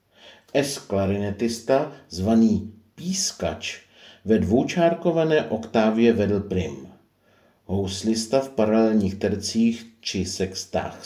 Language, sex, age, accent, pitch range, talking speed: Czech, male, 50-69, native, 100-130 Hz, 75 wpm